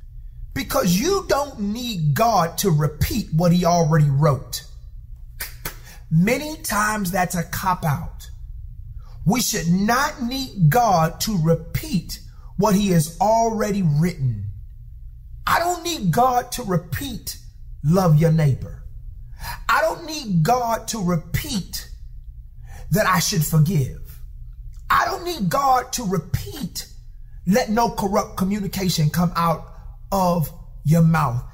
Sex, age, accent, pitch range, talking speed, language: male, 40-59, American, 135-225 Hz, 120 wpm, English